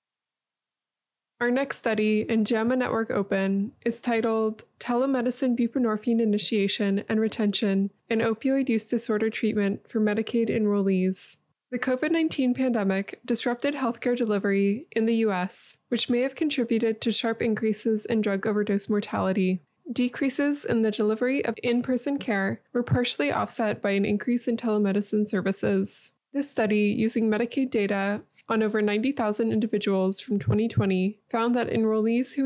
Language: English